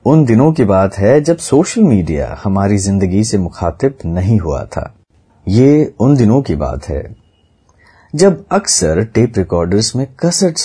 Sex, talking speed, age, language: male, 150 wpm, 30-49, Hindi